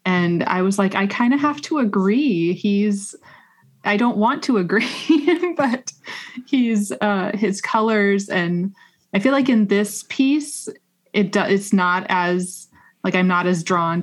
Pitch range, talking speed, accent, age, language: 170-205 Hz, 165 wpm, American, 20-39, English